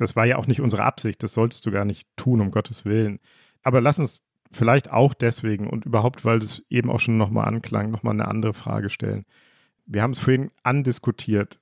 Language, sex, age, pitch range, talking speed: German, male, 40-59, 110-130 Hz, 210 wpm